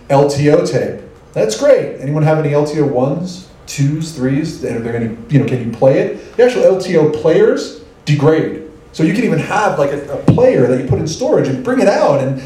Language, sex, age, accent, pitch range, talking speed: English, male, 40-59, American, 125-150 Hz, 205 wpm